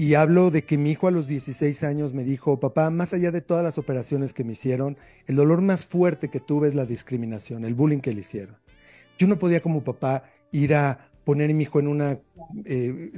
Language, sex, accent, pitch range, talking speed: Spanish, male, Mexican, 135-170 Hz, 230 wpm